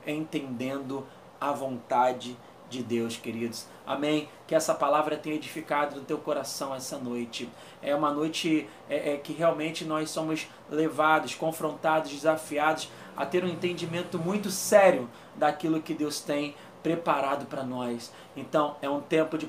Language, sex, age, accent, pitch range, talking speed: Portuguese, male, 20-39, Brazilian, 150-175 Hz, 145 wpm